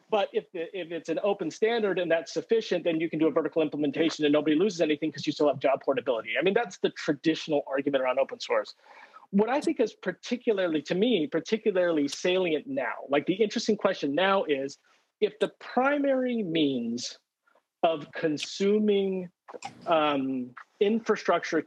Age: 40-59